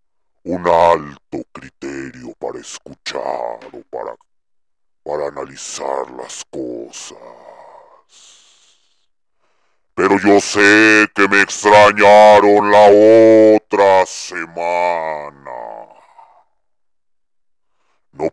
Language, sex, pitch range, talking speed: Spanish, female, 70-90 Hz, 70 wpm